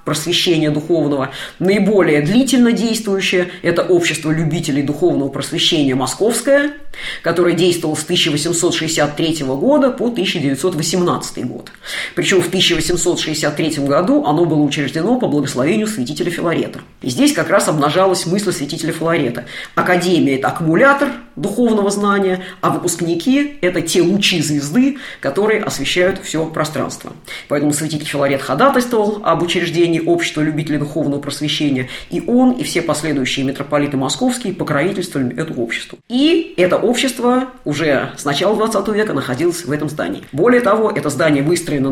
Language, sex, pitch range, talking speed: Russian, female, 150-200 Hz, 130 wpm